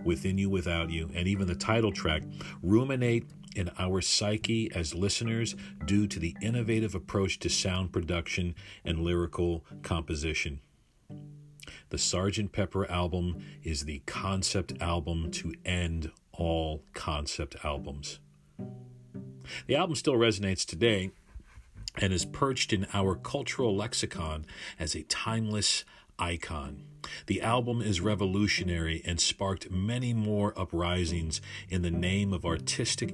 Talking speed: 125 wpm